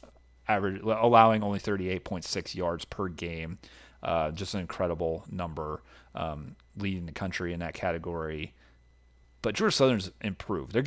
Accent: American